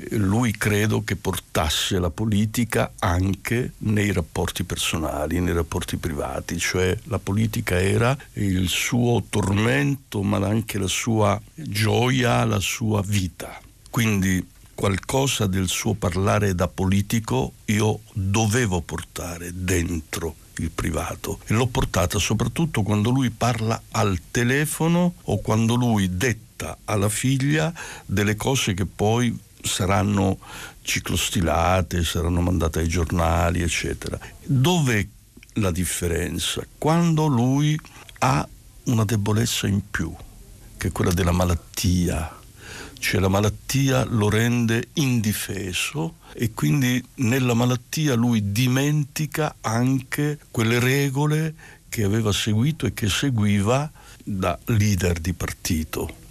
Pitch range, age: 95-120 Hz, 60-79